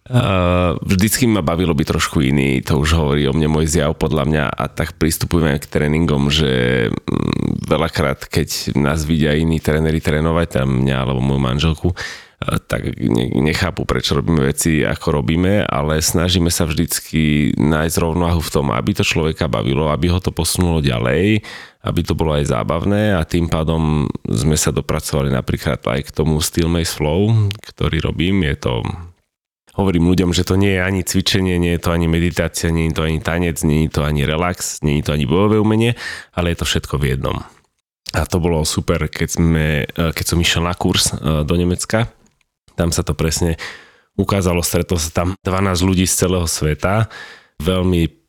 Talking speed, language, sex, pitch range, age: 180 wpm, Slovak, male, 75-90 Hz, 30-49